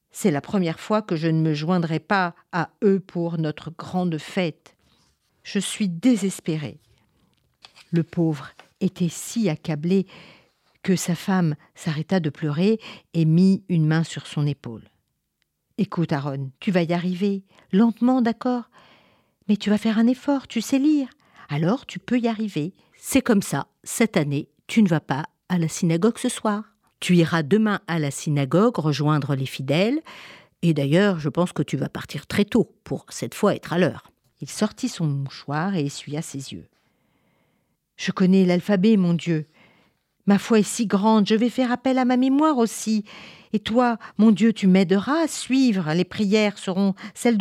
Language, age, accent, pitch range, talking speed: French, 50-69, French, 155-220 Hz, 170 wpm